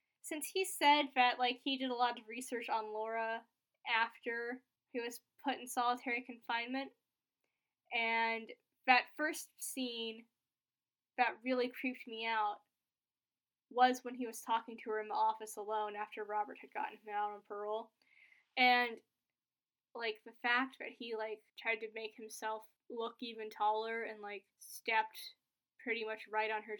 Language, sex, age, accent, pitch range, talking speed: English, female, 10-29, American, 220-275 Hz, 155 wpm